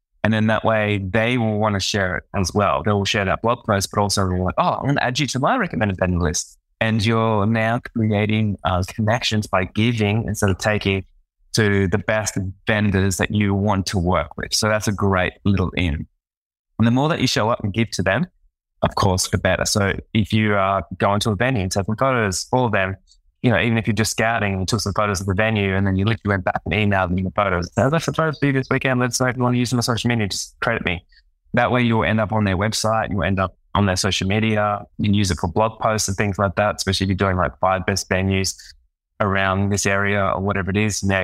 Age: 20-39